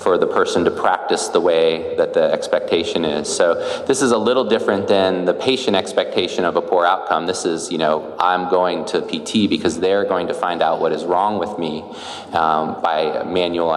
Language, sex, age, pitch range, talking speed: English, male, 30-49, 80-130 Hz, 205 wpm